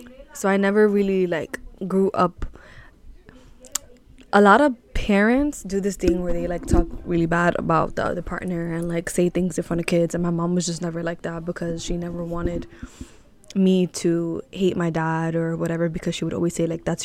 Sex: female